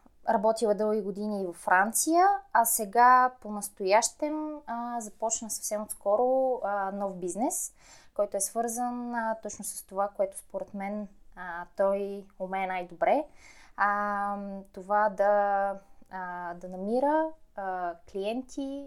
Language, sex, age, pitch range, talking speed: Bulgarian, female, 20-39, 190-225 Hz, 120 wpm